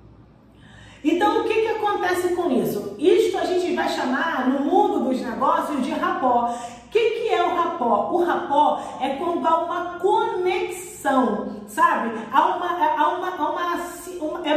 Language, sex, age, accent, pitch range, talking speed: Portuguese, female, 40-59, Brazilian, 280-360 Hz, 160 wpm